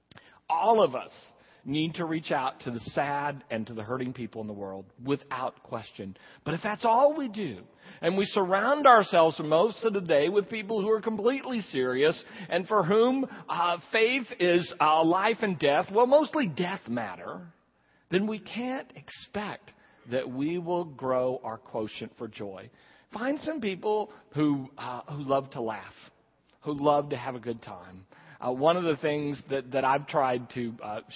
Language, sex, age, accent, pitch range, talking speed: English, male, 50-69, American, 125-185 Hz, 180 wpm